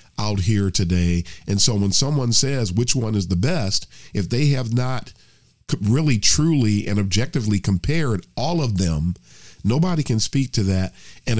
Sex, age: male, 50-69